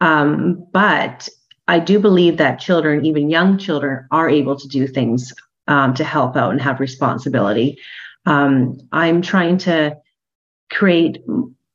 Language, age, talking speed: English, 30-49, 140 wpm